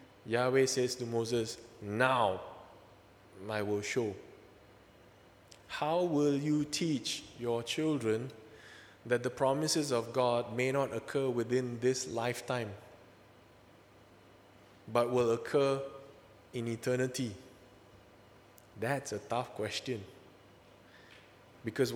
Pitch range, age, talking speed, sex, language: 105-135 Hz, 20-39, 95 wpm, male, English